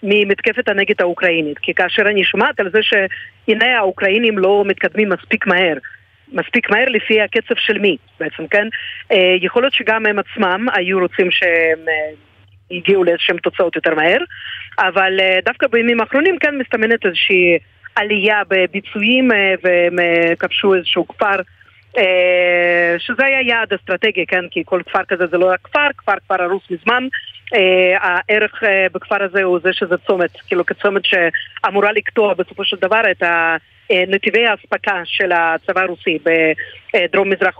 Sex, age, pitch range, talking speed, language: female, 40-59, 180-215 Hz, 145 wpm, Hebrew